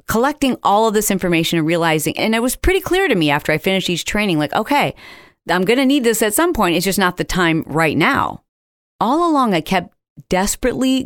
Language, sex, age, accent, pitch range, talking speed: English, female, 40-59, American, 165-230 Hz, 220 wpm